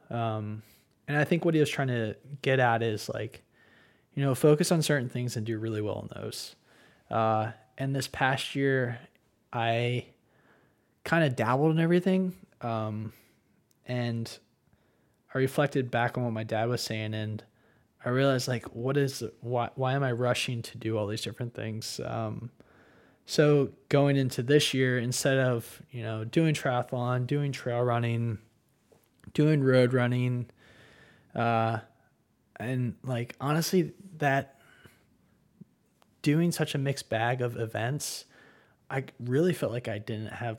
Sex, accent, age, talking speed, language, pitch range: male, American, 20-39, 150 wpm, English, 110-135 Hz